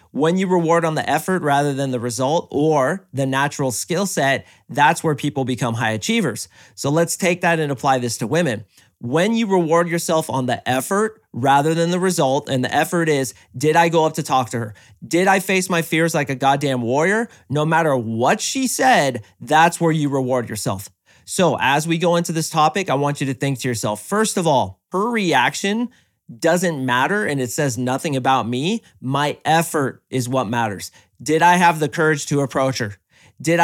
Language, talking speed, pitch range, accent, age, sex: English, 200 wpm, 130-170 Hz, American, 30-49, male